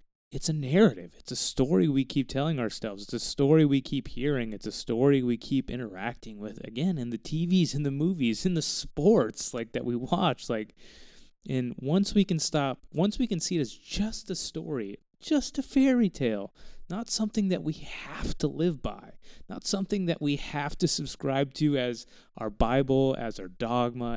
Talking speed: 195 wpm